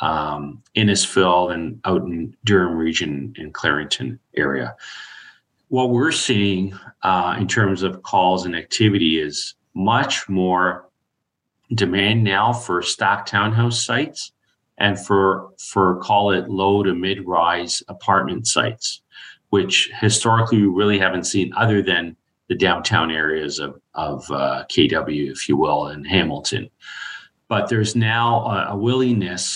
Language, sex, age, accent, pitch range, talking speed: English, male, 40-59, American, 90-110 Hz, 130 wpm